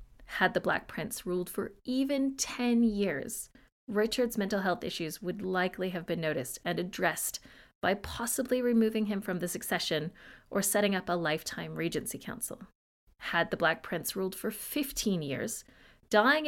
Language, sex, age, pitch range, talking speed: English, female, 30-49, 170-225 Hz, 155 wpm